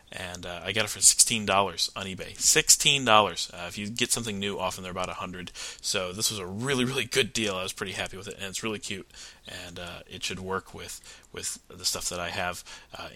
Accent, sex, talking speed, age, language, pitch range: American, male, 235 wpm, 30-49, English, 95-110 Hz